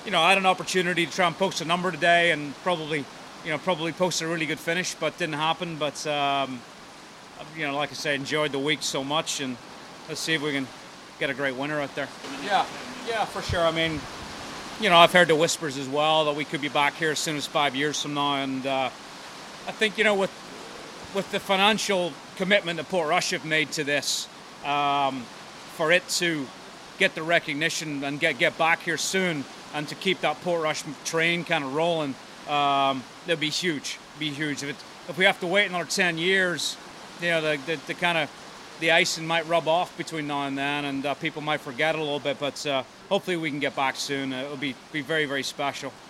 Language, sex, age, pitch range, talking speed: English, male, 30-49, 145-170 Hz, 225 wpm